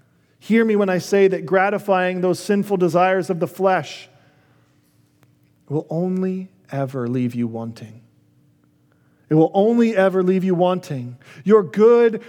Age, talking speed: 40-59, 135 wpm